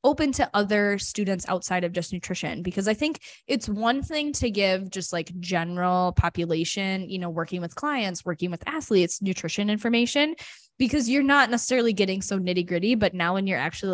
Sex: female